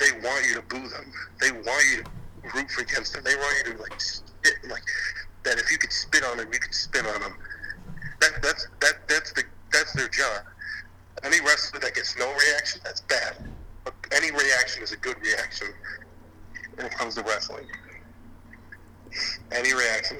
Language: English